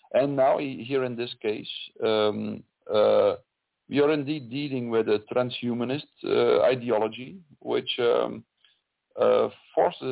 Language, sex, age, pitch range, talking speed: English, male, 40-59, 110-135 Hz, 125 wpm